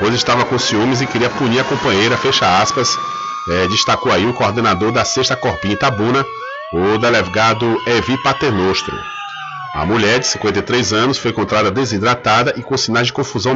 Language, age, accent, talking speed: Portuguese, 40-59, Brazilian, 160 wpm